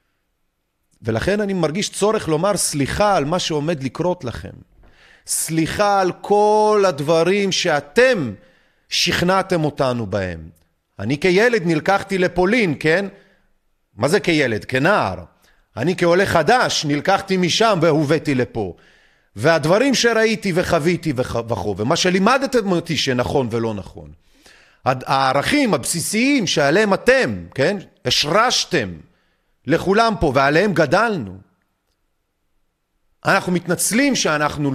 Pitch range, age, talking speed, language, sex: 135-195 Hz, 40-59, 100 wpm, Hebrew, male